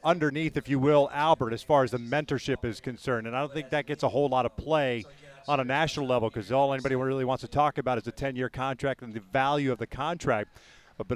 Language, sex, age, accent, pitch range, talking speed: English, male, 40-59, American, 135-160 Hz, 245 wpm